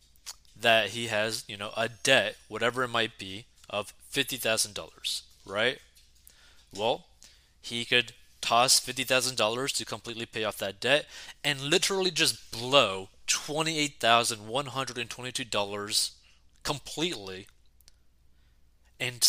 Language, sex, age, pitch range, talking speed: English, male, 20-39, 85-130 Hz, 100 wpm